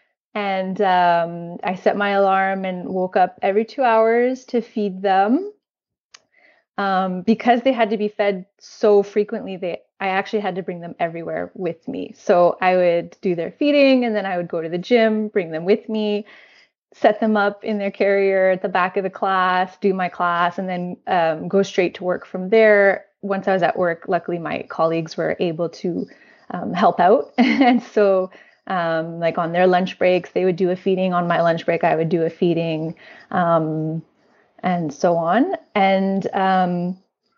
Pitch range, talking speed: 180-215 Hz, 190 wpm